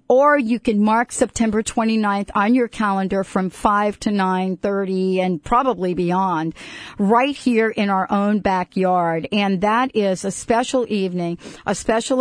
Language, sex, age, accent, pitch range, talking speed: English, female, 50-69, American, 185-225 Hz, 150 wpm